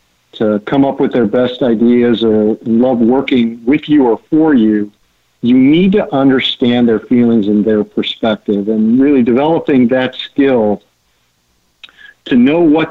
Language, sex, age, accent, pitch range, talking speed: English, male, 50-69, American, 110-130 Hz, 150 wpm